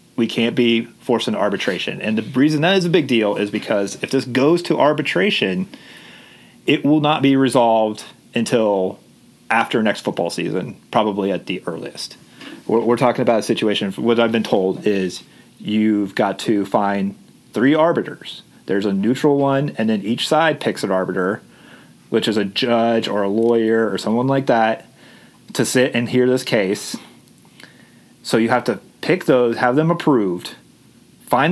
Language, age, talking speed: English, 30-49, 170 wpm